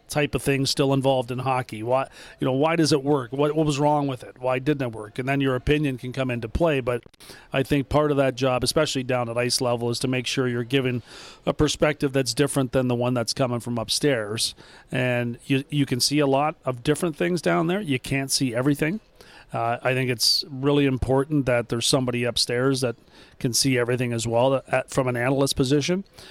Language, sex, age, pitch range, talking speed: English, male, 40-59, 120-140 Hz, 225 wpm